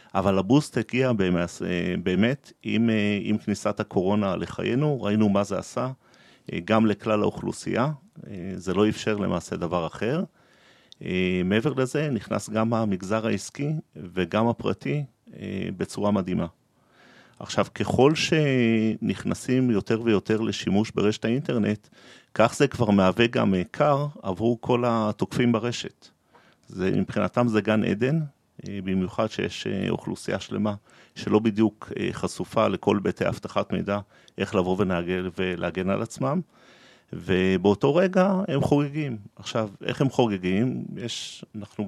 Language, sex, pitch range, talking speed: Hebrew, male, 100-125 Hz, 115 wpm